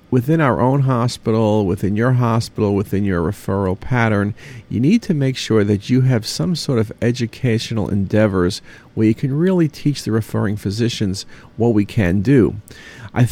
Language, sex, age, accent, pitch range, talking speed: English, male, 50-69, American, 110-150 Hz, 165 wpm